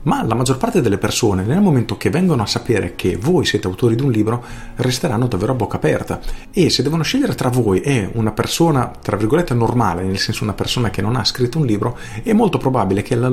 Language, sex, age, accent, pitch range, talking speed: Italian, male, 40-59, native, 100-125 Hz, 230 wpm